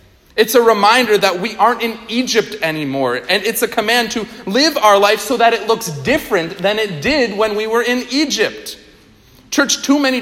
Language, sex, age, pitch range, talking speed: English, male, 40-59, 190-240 Hz, 195 wpm